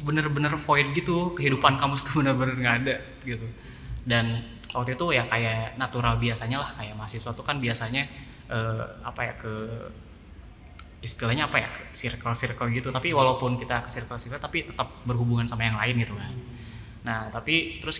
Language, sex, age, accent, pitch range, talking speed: Indonesian, male, 20-39, native, 115-135 Hz, 155 wpm